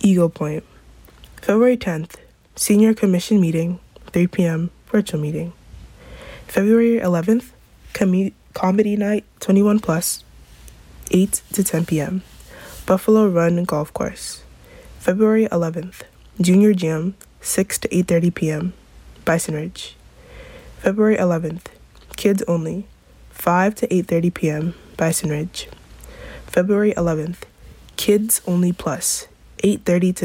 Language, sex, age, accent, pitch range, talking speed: English, female, 20-39, American, 165-205 Hz, 100 wpm